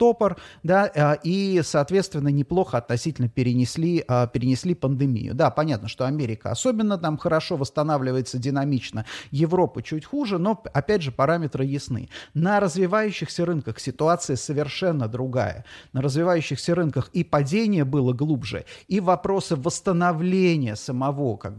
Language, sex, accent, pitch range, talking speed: Russian, male, native, 130-175 Hz, 120 wpm